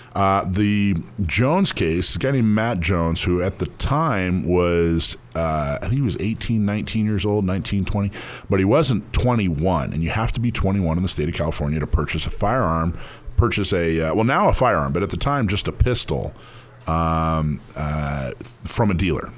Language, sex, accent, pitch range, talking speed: English, male, American, 80-120 Hz, 195 wpm